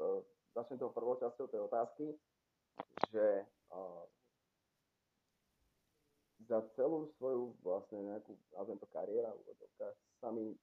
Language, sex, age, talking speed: Czech, male, 30-49, 105 wpm